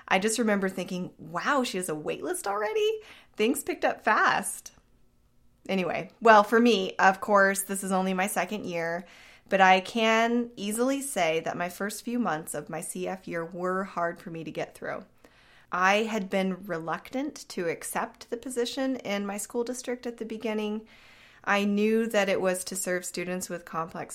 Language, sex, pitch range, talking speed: English, female, 175-215 Hz, 180 wpm